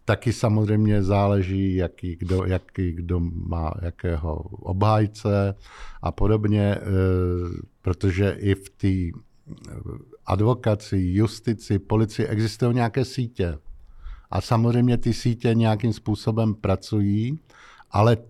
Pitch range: 95-115 Hz